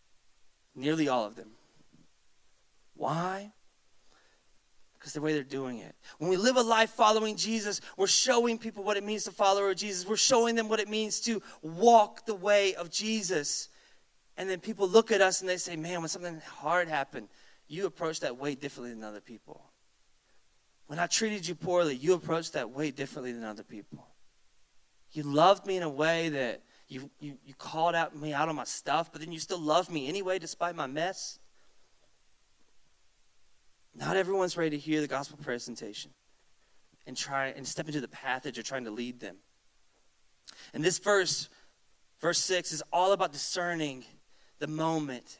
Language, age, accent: English, 30-49, American